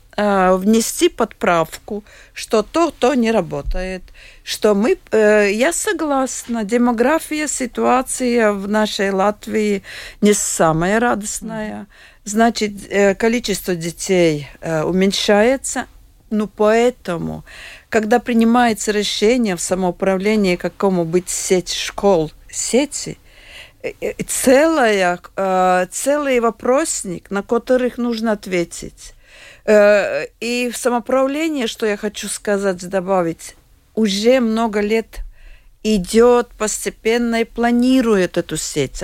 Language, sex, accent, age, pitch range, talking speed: Russian, female, native, 50-69, 190-240 Hz, 90 wpm